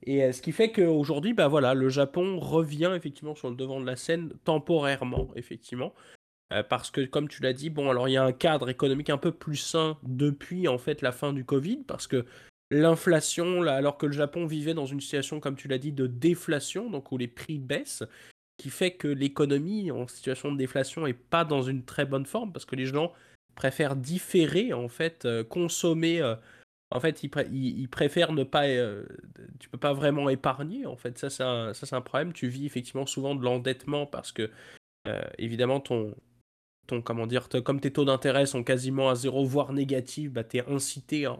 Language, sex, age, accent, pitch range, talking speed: French, male, 20-39, French, 125-150 Hz, 215 wpm